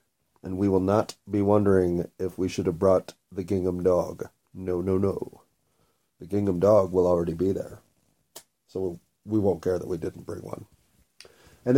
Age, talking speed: 30-49, 175 wpm